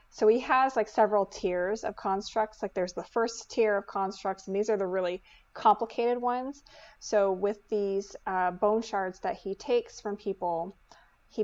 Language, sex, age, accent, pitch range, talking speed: English, female, 20-39, American, 185-220 Hz, 180 wpm